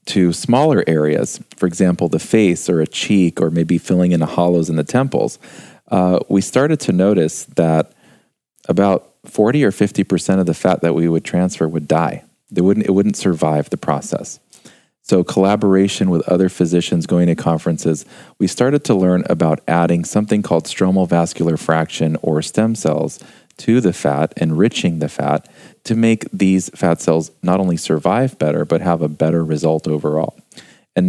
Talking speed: 170 wpm